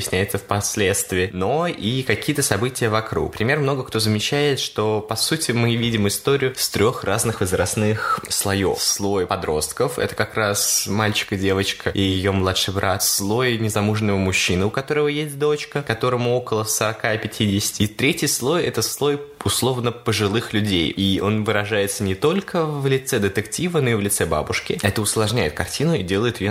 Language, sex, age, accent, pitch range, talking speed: Russian, male, 20-39, native, 95-125 Hz, 160 wpm